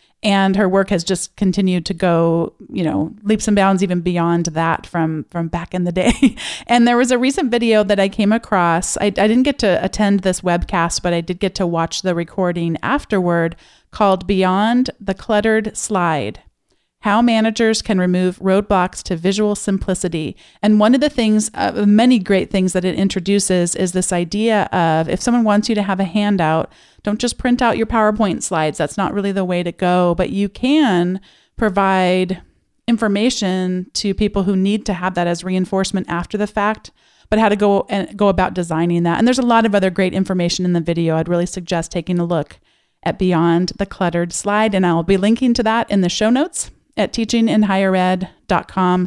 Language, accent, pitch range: English, American, 180-215 Hz